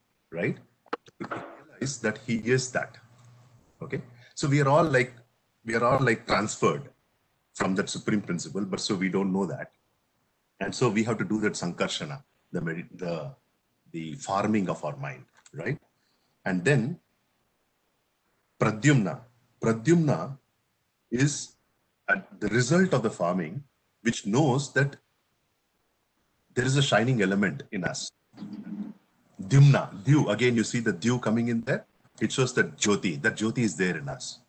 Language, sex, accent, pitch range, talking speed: English, male, Indian, 110-135 Hz, 145 wpm